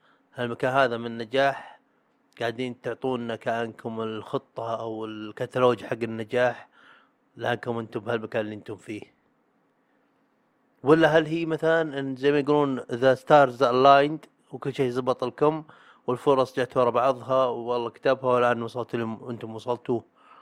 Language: Arabic